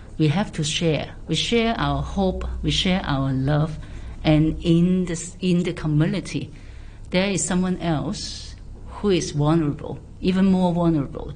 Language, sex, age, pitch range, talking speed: English, female, 50-69, 145-175 Hz, 145 wpm